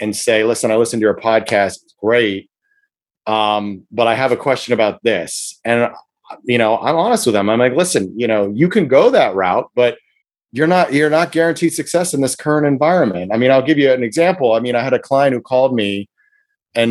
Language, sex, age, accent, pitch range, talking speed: English, male, 30-49, American, 120-165 Hz, 225 wpm